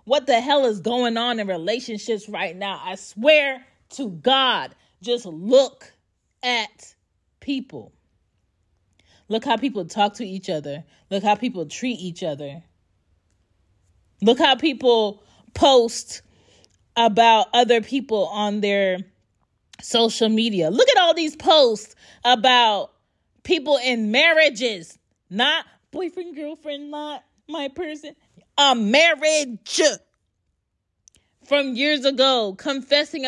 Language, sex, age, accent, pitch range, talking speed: English, female, 30-49, American, 180-265 Hz, 115 wpm